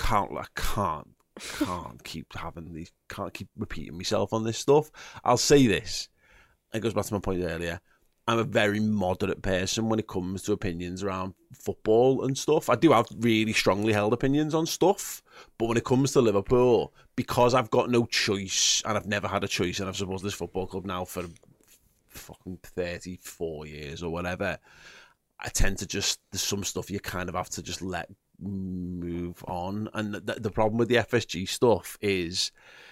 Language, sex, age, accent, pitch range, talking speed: English, male, 30-49, British, 95-115 Hz, 190 wpm